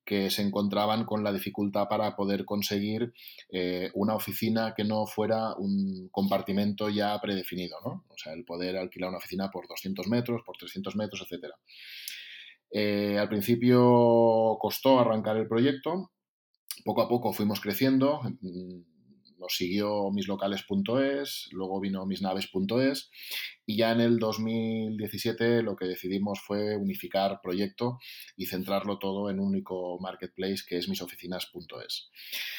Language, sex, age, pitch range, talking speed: Spanish, male, 30-49, 95-110 Hz, 135 wpm